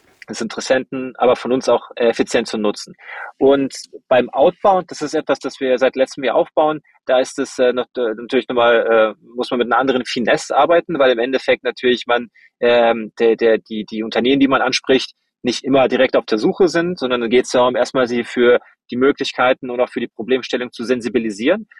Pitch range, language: 120-135 Hz, German